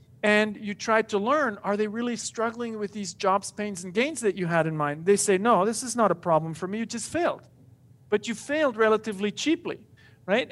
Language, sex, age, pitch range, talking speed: English, male, 50-69, 180-225 Hz, 220 wpm